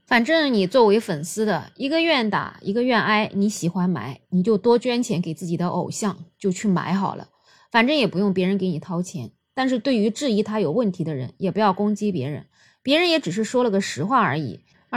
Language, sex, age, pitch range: Chinese, female, 20-39, 180-240 Hz